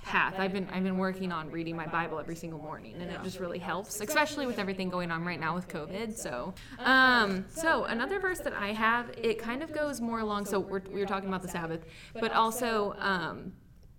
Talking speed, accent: 220 wpm, American